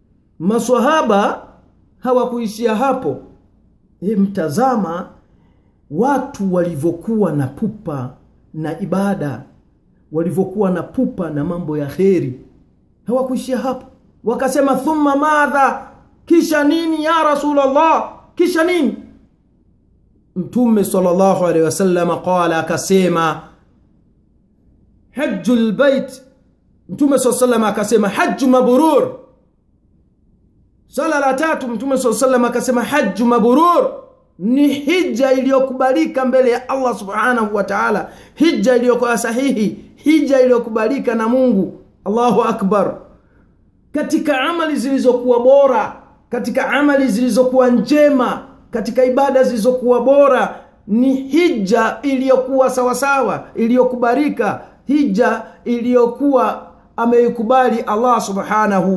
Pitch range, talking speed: 200-270 Hz, 95 wpm